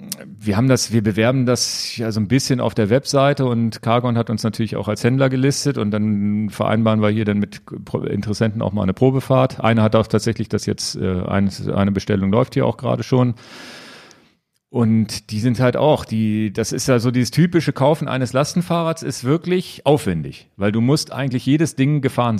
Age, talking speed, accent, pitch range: 40-59, 195 wpm, German, 105-135 Hz